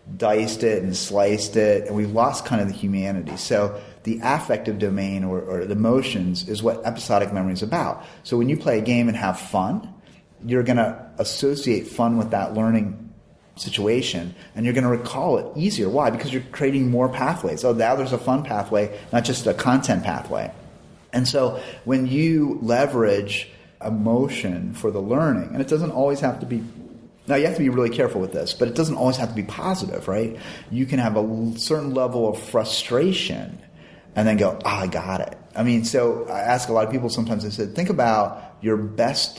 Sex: male